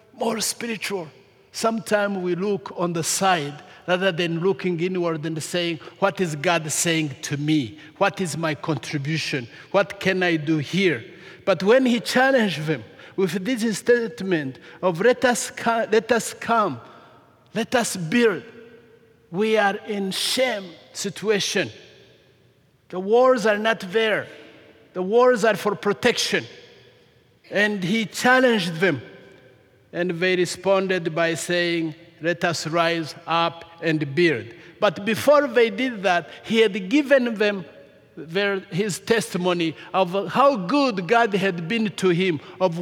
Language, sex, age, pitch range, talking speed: English, male, 50-69, 160-215 Hz, 130 wpm